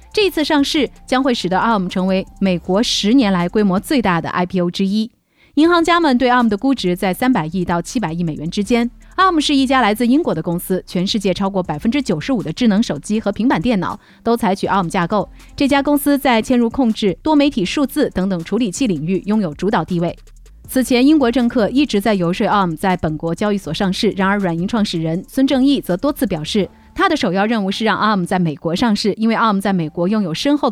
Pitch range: 185-255 Hz